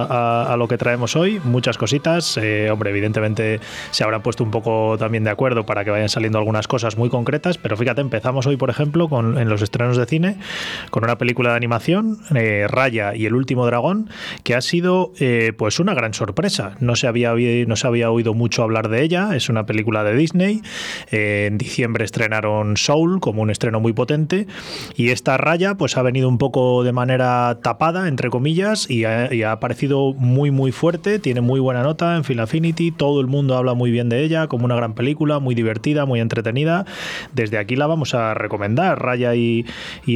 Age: 20-39